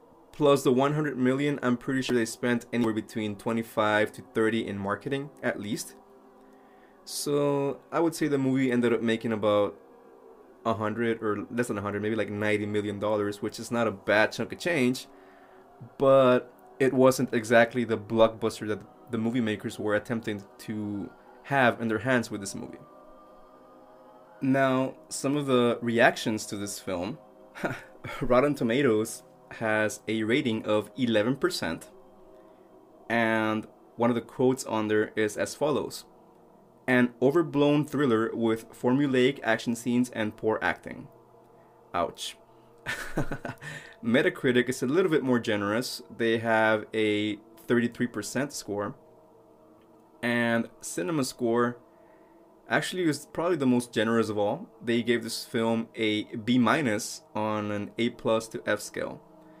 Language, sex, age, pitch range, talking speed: English, male, 20-39, 110-130 Hz, 135 wpm